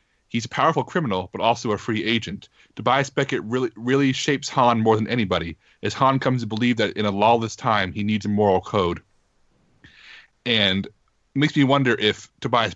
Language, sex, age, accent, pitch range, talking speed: English, male, 30-49, American, 100-120 Hz, 190 wpm